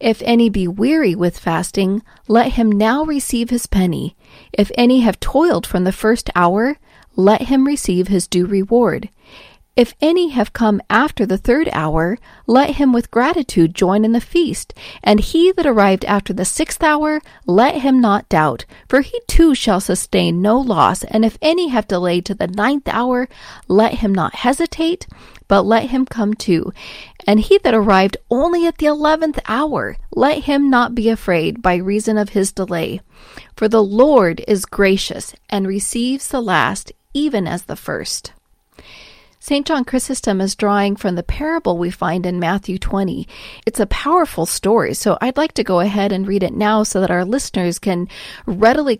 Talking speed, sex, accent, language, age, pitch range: 175 wpm, female, American, English, 40-59, 190-260 Hz